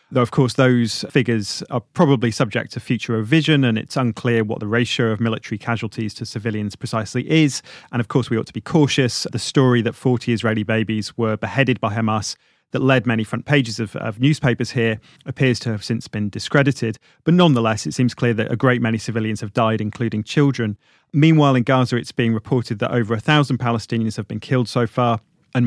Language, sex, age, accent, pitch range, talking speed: English, male, 30-49, British, 115-130 Hz, 205 wpm